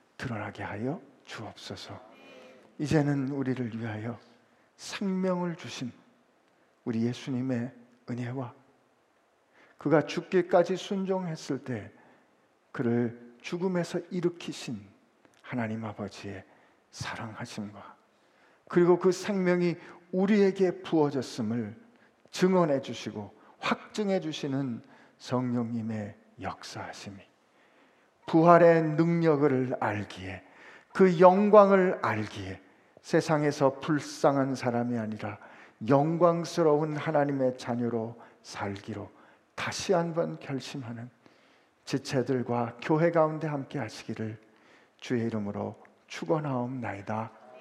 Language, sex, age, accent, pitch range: Korean, male, 50-69, native, 115-170 Hz